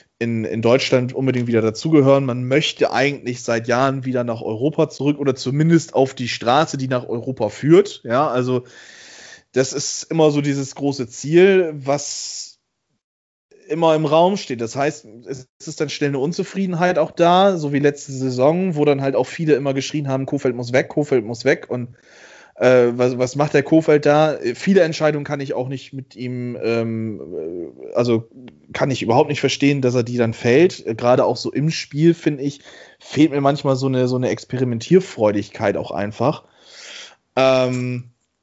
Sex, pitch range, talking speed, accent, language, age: male, 125-150 Hz, 170 wpm, German, German, 20-39